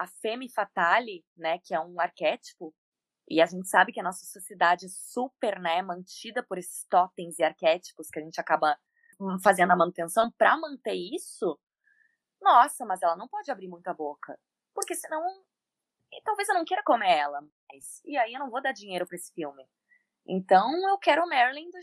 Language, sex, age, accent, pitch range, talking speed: Portuguese, female, 20-39, Brazilian, 175-255 Hz, 190 wpm